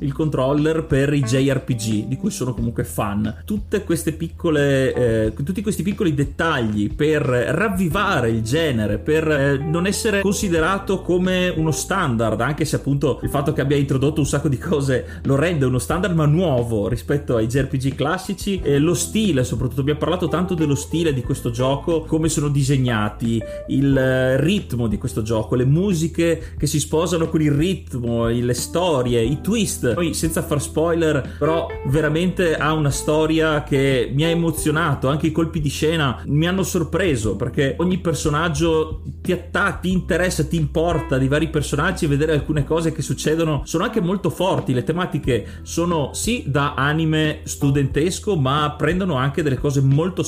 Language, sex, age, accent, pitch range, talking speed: Italian, male, 30-49, native, 130-165 Hz, 165 wpm